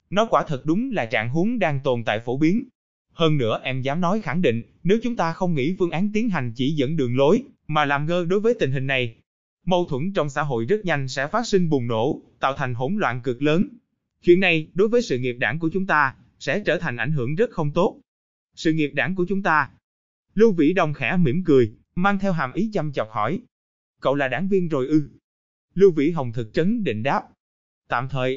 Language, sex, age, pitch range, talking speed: Vietnamese, male, 20-39, 130-185 Hz, 235 wpm